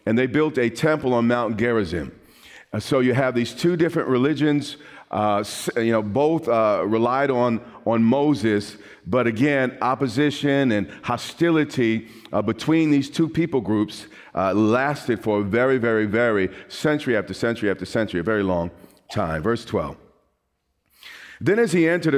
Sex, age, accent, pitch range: male, 40-59, American, 115-150 Hz